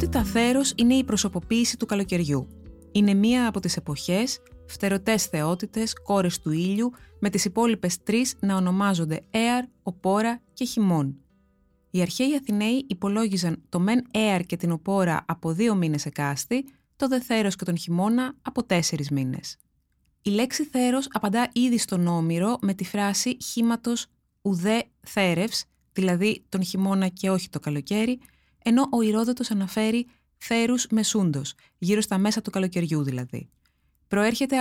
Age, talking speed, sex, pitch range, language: 20-39, 145 wpm, female, 175-230 Hz, Greek